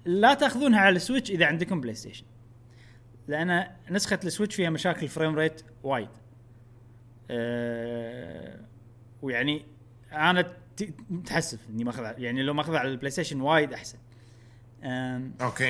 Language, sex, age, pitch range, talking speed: Arabic, male, 30-49, 120-185 Hz, 125 wpm